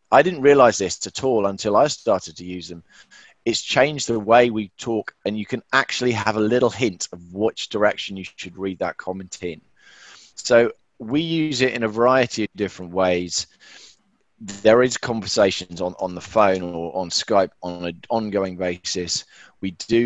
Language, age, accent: English, 20-39, British